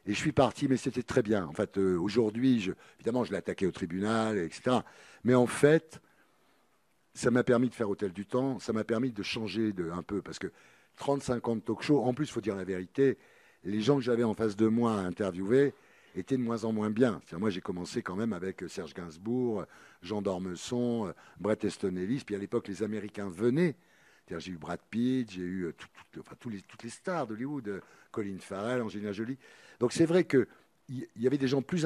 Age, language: 60-79, French